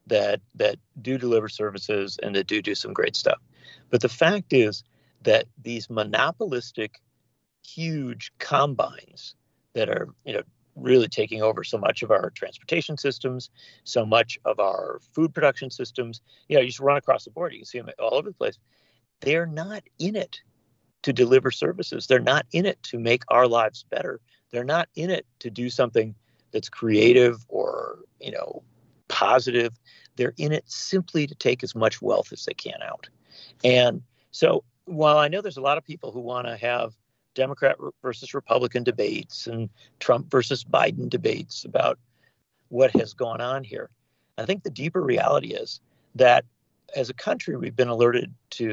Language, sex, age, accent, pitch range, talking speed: English, male, 50-69, American, 115-150 Hz, 175 wpm